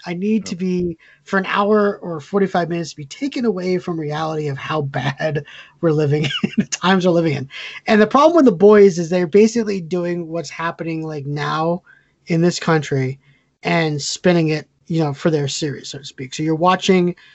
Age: 20-39